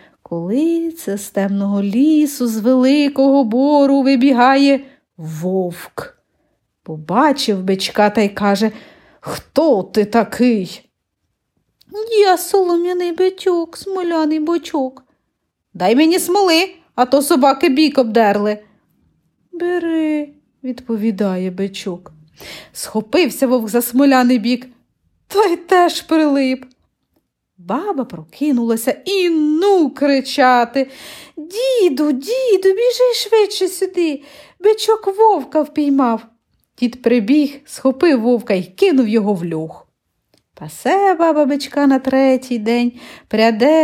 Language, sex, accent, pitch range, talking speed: Ukrainian, female, native, 225-330 Hz, 95 wpm